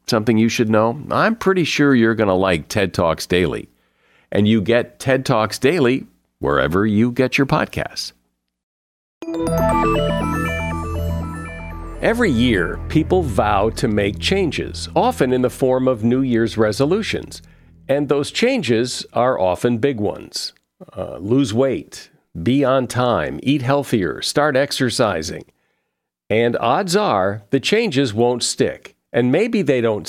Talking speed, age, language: 135 wpm, 50-69, English